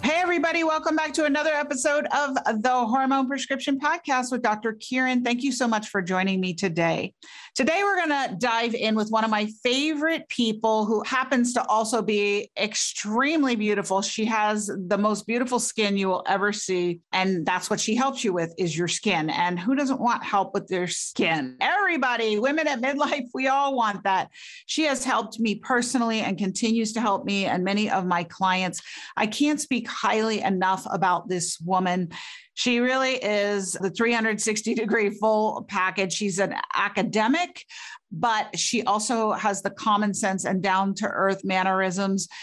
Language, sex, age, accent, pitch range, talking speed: English, female, 40-59, American, 195-250 Hz, 170 wpm